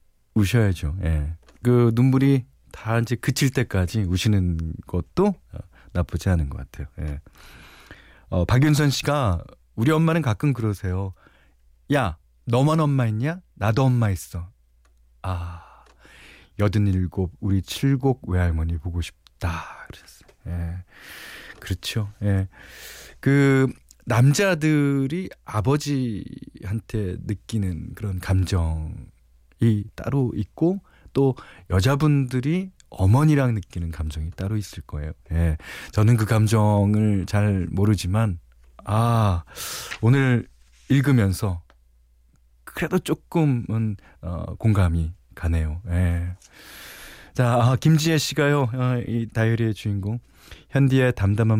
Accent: native